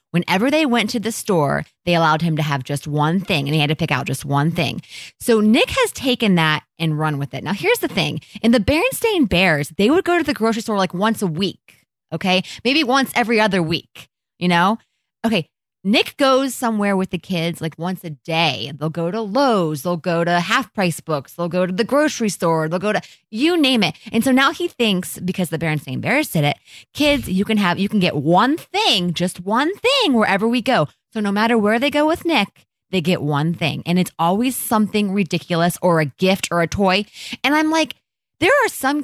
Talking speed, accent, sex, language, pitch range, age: 225 wpm, American, female, English, 160-235 Hz, 20-39